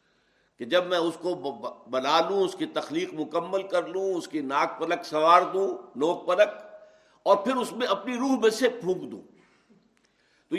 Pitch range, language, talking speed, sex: 180-270 Hz, Urdu, 180 wpm, male